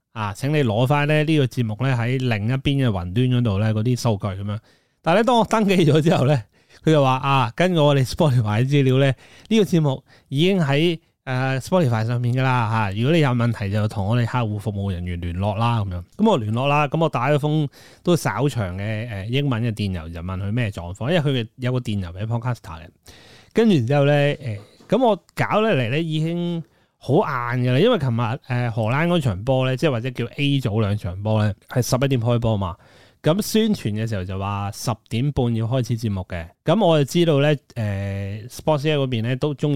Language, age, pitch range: Chinese, 30-49, 110-145 Hz